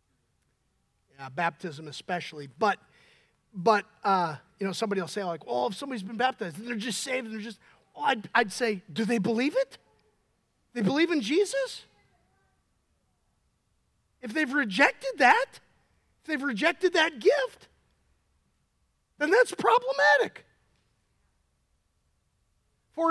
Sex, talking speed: male, 125 wpm